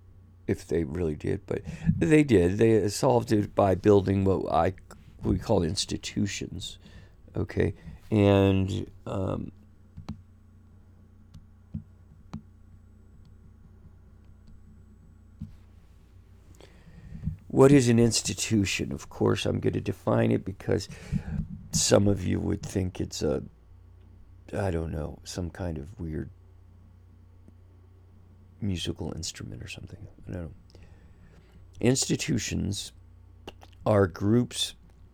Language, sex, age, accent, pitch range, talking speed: English, male, 50-69, American, 90-100 Hz, 95 wpm